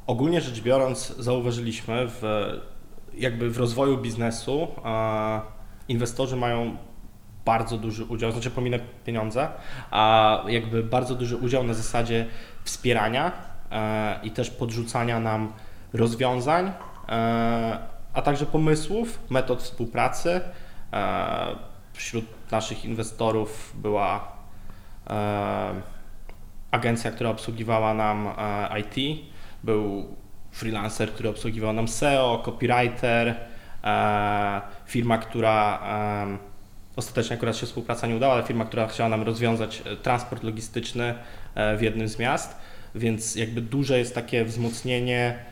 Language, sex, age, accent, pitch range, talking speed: Polish, male, 20-39, native, 110-125 Hz, 100 wpm